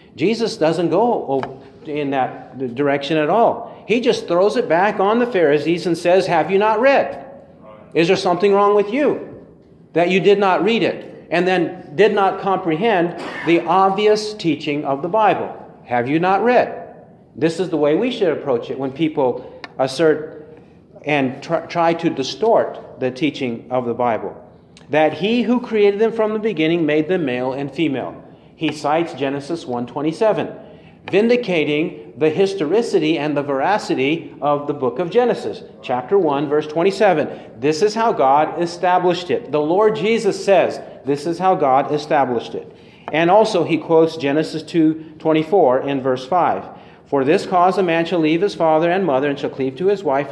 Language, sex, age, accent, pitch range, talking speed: English, male, 40-59, American, 145-195 Hz, 170 wpm